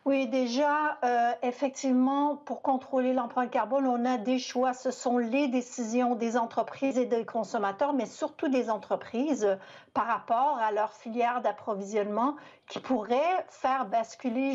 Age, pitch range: 60-79, 215-260 Hz